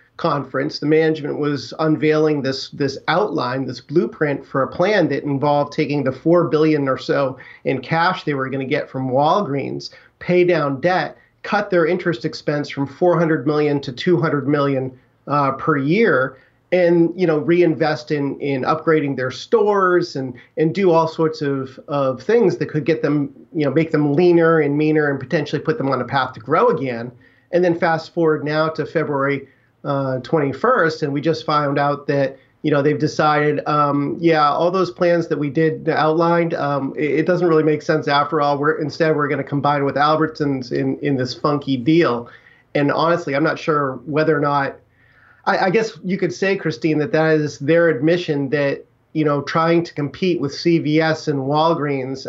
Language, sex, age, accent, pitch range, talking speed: English, male, 40-59, American, 140-165 Hz, 190 wpm